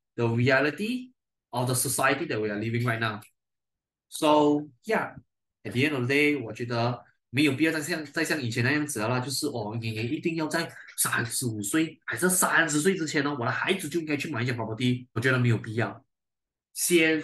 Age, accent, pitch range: 20-39, native, 120-165 Hz